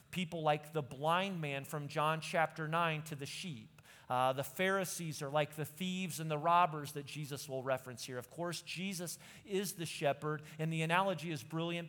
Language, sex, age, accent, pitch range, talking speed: English, male, 40-59, American, 140-165 Hz, 190 wpm